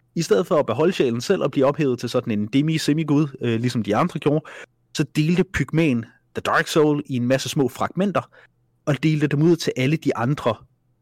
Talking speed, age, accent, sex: 205 wpm, 30-49, native, male